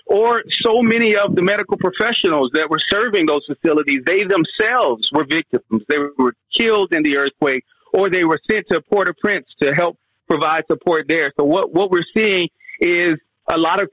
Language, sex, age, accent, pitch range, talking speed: English, male, 40-59, American, 150-180 Hz, 190 wpm